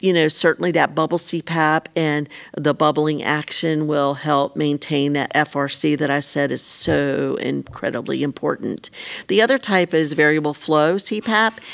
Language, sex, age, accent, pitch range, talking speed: English, female, 50-69, American, 145-170 Hz, 150 wpm